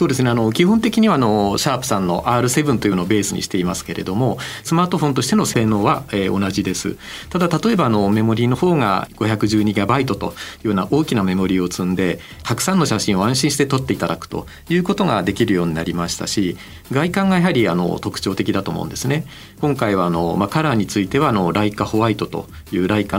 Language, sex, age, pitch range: Japanese, male, 40-59, 95-150 Hz